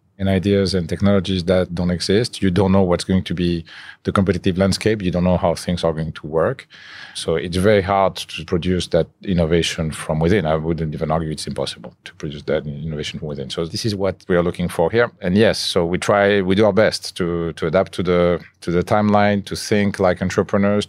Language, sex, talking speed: English, male, 225 wpm